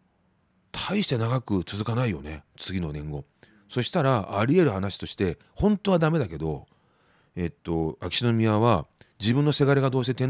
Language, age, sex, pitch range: Japanese, 40-59, male, 85-130 Hz